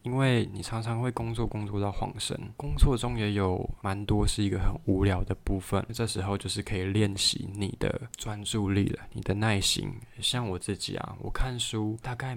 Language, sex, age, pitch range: Chinese, male, 20-39, 100-120 Hz